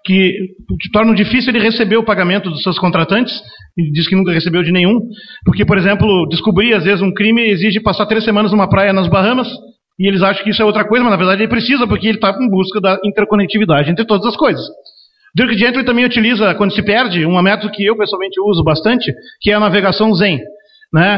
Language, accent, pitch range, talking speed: Portuguese, Brazilian, 190-240 Hz, 220 wpm